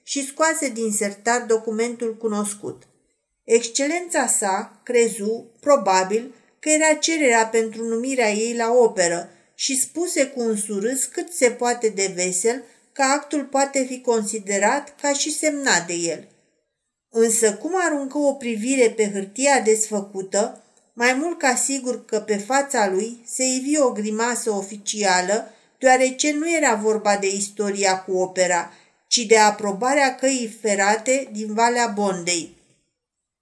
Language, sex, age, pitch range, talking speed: Romanian, female, 50-69, 215-265 Hz, 135 wpm